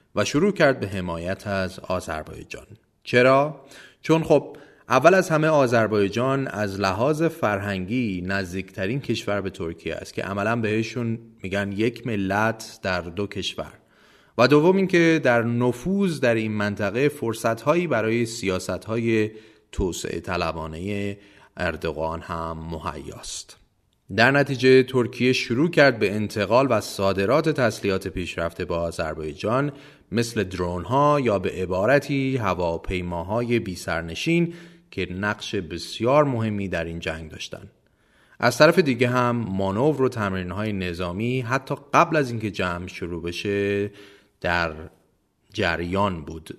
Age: 30-49